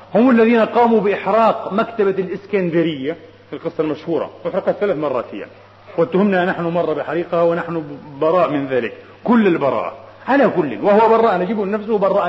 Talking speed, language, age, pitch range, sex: 140 wpm, Arabic, 40-59, 180-240 Hz, male